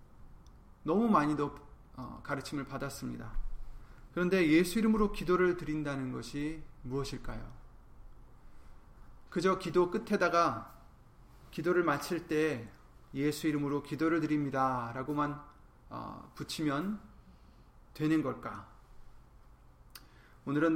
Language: Korean